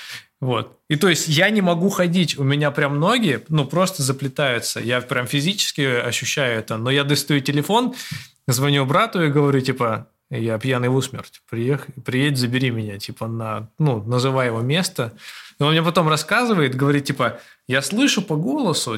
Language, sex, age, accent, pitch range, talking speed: Russian, male, 20-39, native, 125-160 Hz, 170 wpm